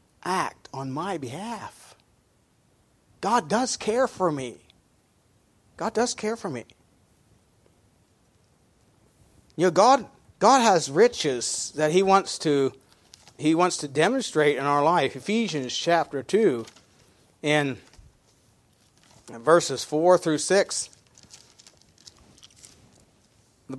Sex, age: male, 40-59